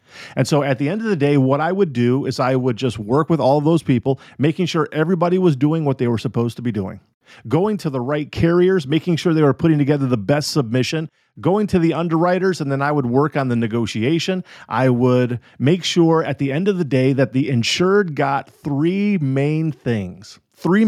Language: English